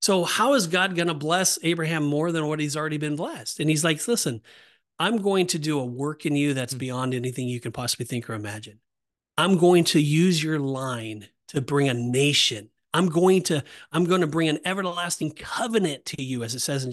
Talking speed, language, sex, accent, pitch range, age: 220 wpm, English, male, American, 140-220 Hz, 30-49